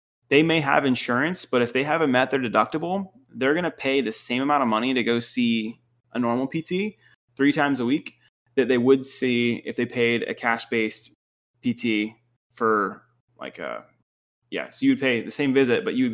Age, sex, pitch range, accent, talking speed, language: 20-39, male, 115-140 Hz, American, 195 wpm, English